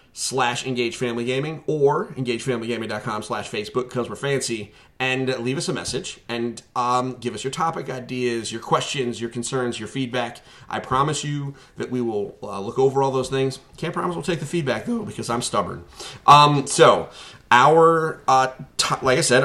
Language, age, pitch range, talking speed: English, 30-49, 120-140 Hz, 180 wpm